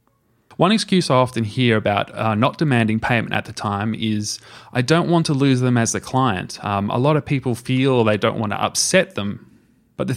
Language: English